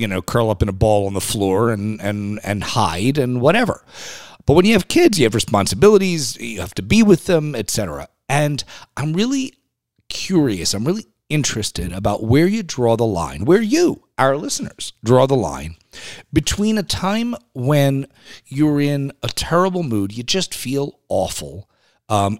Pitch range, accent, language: 105-150 Hz, American, English